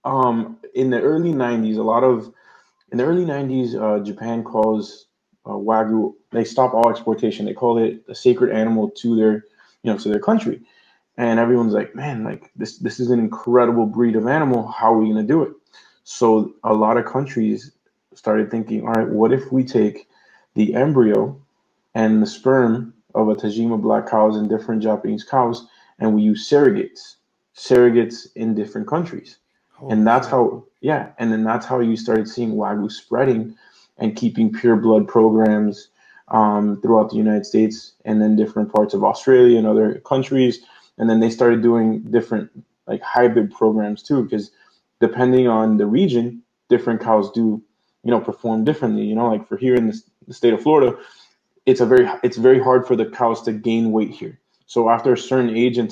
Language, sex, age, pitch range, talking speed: English, male, 20-39, 110-125 Hz, 185 wpm